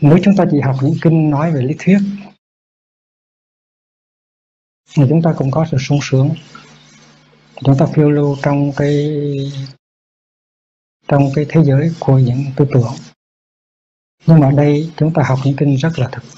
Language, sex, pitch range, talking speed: Vietnamese, male, 125-155 Hz, 165 wpm